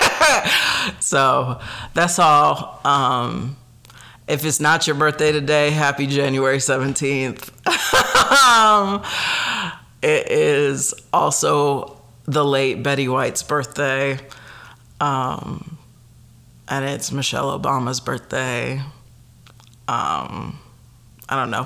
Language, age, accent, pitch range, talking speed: English, 40-59, American, 120-150 Hz, 85 wpm